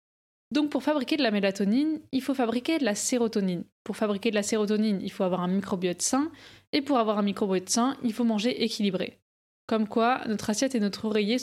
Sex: female